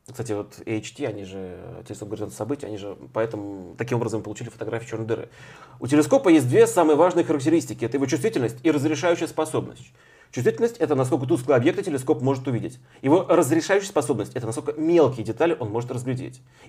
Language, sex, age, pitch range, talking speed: Russian, male, 30-49, 120-155 Hz, 175 wpm